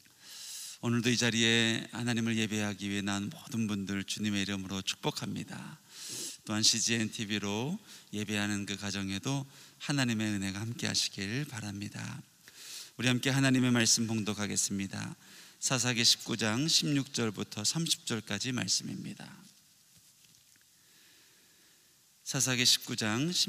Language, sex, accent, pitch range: Korean, male, native, 110-130 Hz